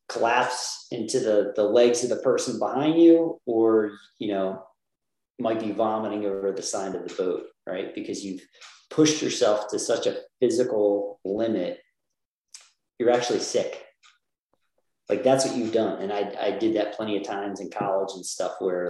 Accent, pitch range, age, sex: American, 95-130 Hz, 40-59, male